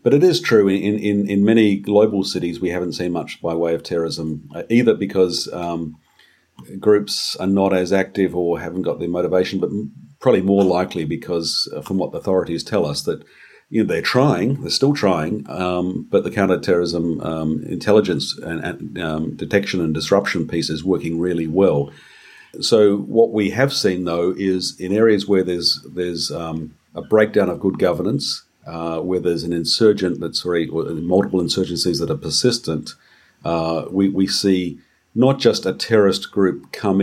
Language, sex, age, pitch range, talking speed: English, male, 50-69, 85-100 Hz, 180 wpm